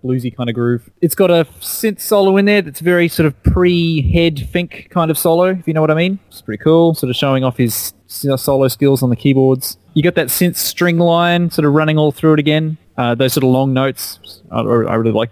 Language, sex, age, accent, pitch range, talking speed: English, male, 20-39, Australian, 115-155 Hz, 245 wpm